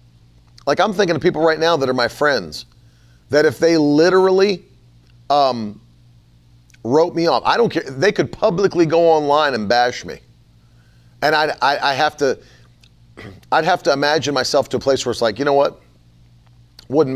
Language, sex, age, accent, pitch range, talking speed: English, male, 40-59, American, 120-160 Hz, 180 wpm